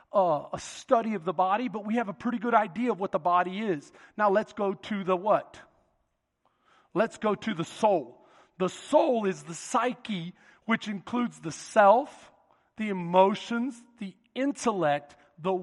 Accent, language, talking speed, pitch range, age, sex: American, English, 165 wpm, 200-270 Hz, 40-59, male